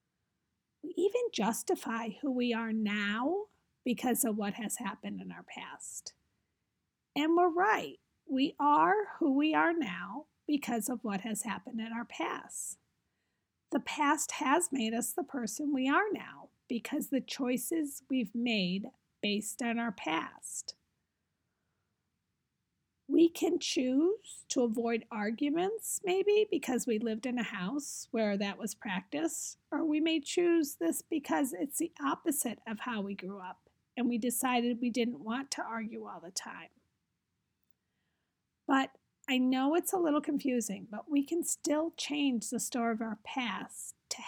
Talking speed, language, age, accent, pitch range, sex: 150 wpm, English, 40-59, American, 225-310 Hz, female